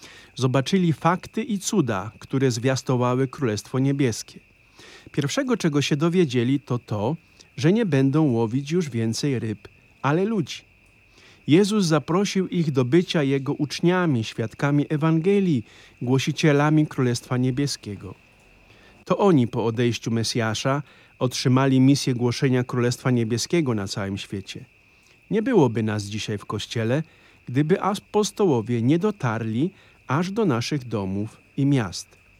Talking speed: 120 wpm